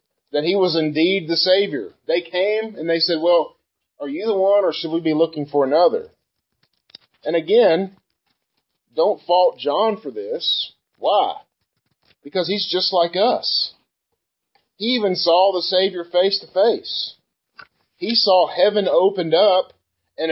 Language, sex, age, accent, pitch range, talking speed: English, male, 40-59, American, 145-190 Hz, 150 wpm